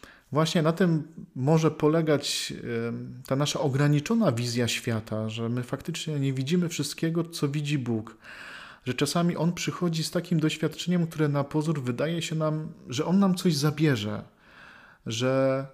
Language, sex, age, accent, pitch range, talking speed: Polish, male, 40-59, native, 130-175 Hz, 145 wpm